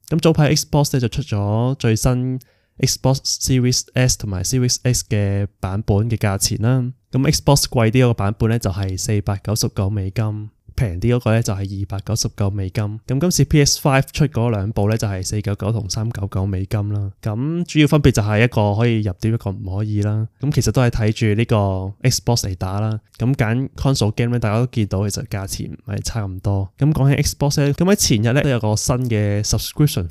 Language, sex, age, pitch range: Chinese, male, 20-39, 105-130 Hz